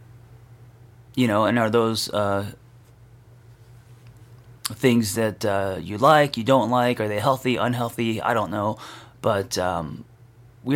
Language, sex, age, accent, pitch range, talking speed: English, male, 30-49, American, 110-120 Hz, 135 wpm